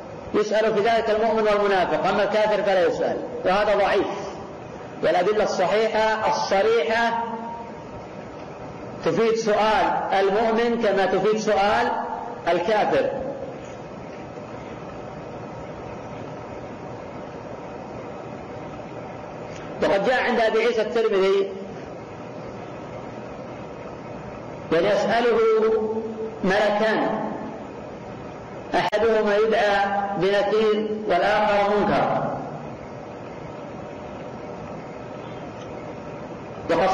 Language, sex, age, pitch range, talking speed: Arabic, female, 50-69, 190-220 Hz, 55 wpm